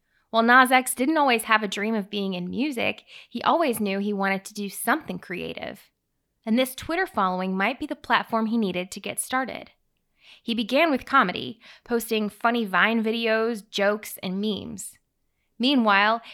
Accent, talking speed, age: American, 165 wpm, 20-39